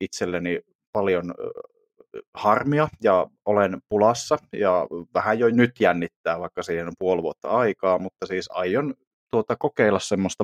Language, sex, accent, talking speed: Finnish, male, native, 130 wpm